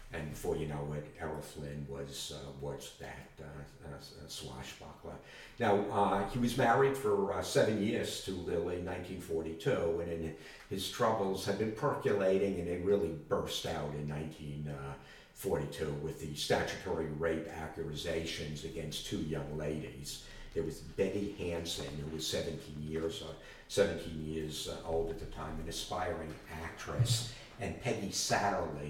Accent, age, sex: American, 50-69, male